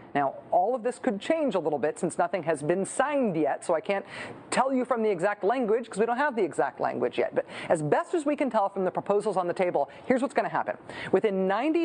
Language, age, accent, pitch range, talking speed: English, 40-59, American, 170-235 Hz, 260 wpm